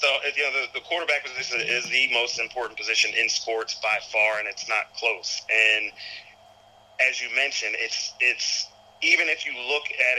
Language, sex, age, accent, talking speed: English, male, 40-59, American, 185 wpm